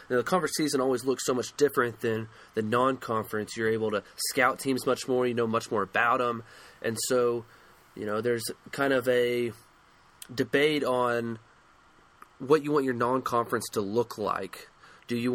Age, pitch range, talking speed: 20-39, 115-135 Hz, 180 wpm